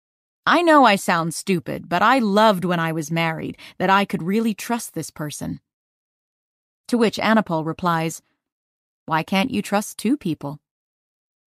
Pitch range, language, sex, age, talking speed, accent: 165-215 Hz, English, female, 30-49, 150 wpm, American